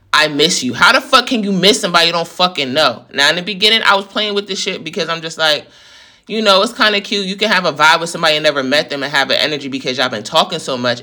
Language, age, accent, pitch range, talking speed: English, 20-39, American, 140-195 Hz, 300 wpm